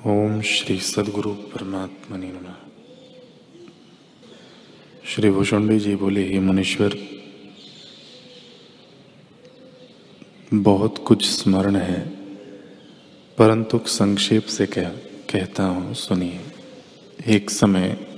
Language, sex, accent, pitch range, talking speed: Hindi, male, native, 100-110 Hz, 75 wpm